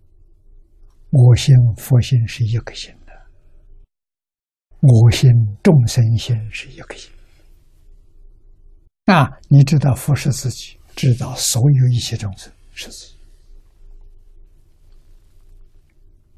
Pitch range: 80-115 Hz